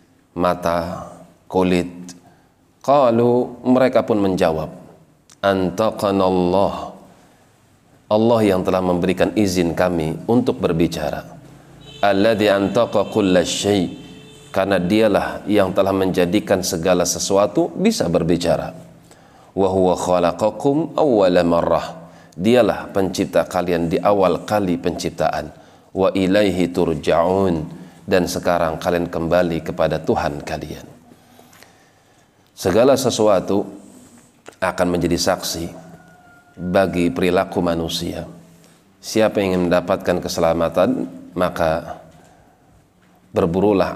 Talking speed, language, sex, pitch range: 85 wpm, Indonesian, male, 85-100 Hz